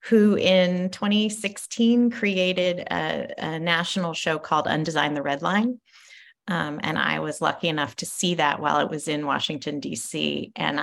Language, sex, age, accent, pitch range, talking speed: English, female, 30-49, American, 145-185 Hz, 160 wpm